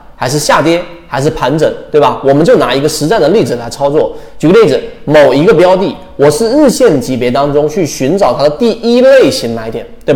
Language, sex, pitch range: Chinese, male, 145-235 Hz